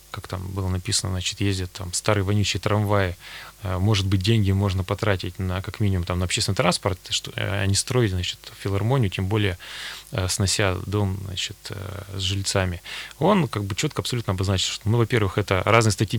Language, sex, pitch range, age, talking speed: Russian, male, 95-115 Hz, 20-39, 170 wpm